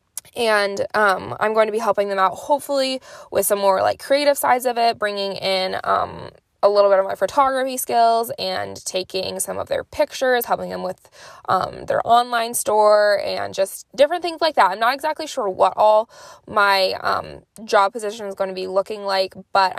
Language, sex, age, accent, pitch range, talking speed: English, female, 20-39, American, 195-245 Hz, 195 wpm